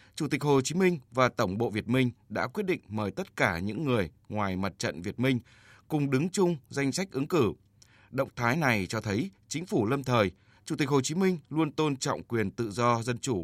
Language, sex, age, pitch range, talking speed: Vietnamese, male, 20-39, 105-135 Hz, 230 wpm